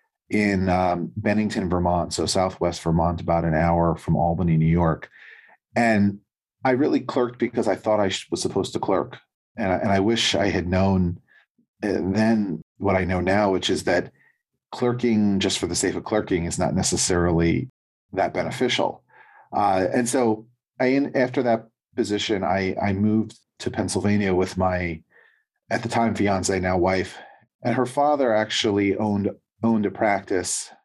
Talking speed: 160 wpm